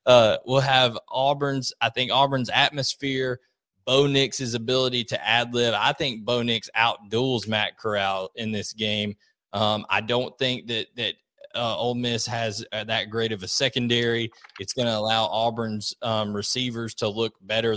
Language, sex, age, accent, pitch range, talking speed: English, male, 20-39, American, 110-130 Hz, 165 wpm